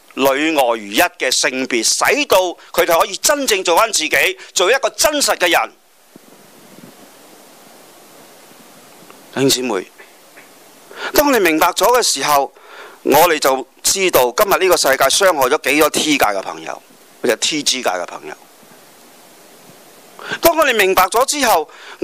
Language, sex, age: Chinese, male, 40-59